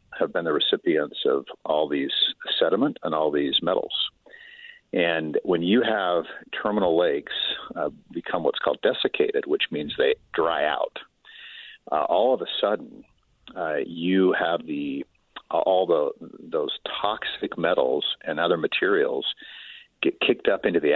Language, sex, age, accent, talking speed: English, male, 50-69, American, 145 wpm